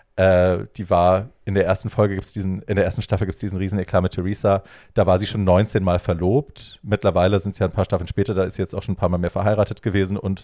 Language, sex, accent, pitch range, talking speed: German, male, German, 90-105 Hz, 275 wpm